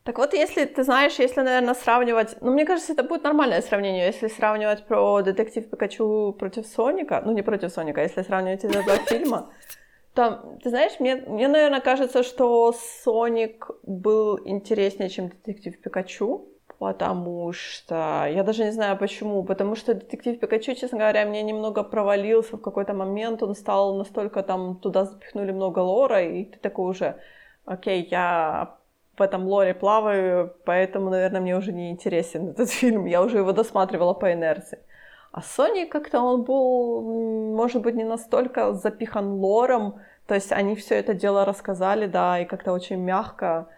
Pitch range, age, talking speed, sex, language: 195-245 Hz, 20-39, 160 wpm, female, Ukrainian